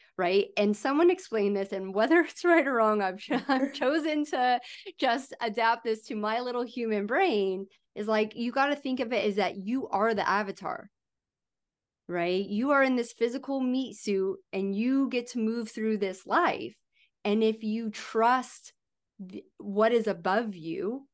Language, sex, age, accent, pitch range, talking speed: English, female, 30-49, American, 195-255 Hz, 180 wpm